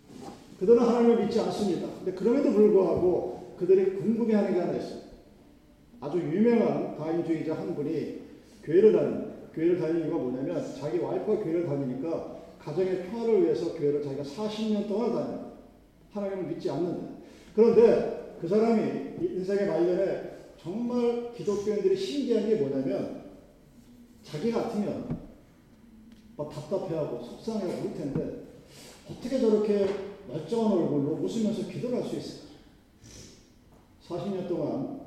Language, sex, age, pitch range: Korean, male, 40-59, 155-220 Hz